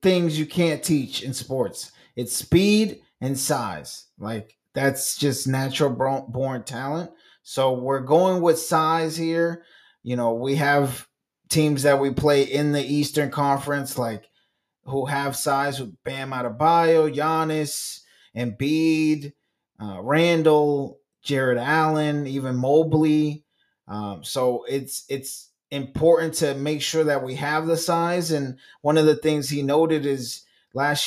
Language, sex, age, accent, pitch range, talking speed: English, male, 20-39, American, 130-150 Hz, 145 wpm